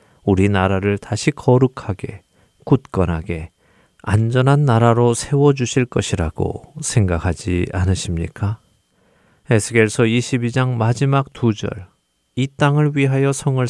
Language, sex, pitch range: Korean, male, 100-130 Hz